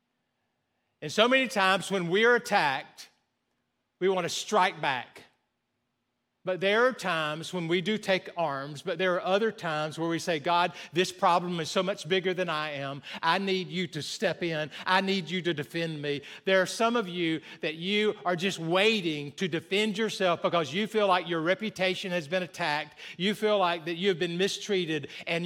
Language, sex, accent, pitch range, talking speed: English, male, American, 150-200 Hz, 195 wpm